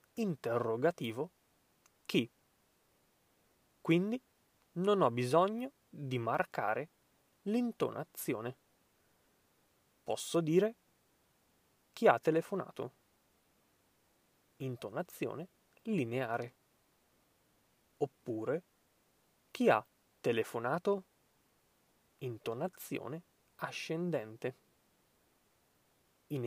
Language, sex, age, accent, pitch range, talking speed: Italian, male, 20-39, native, 120-190 Hz, 50 wpm